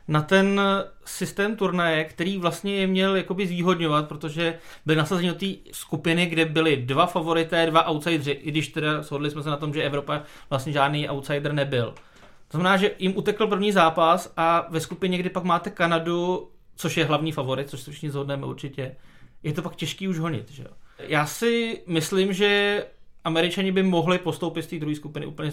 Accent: native